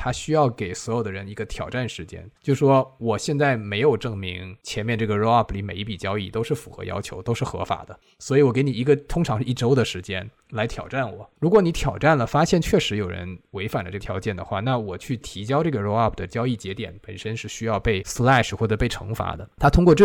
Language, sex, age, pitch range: Chinese, male, 20-39, 100-130 Hz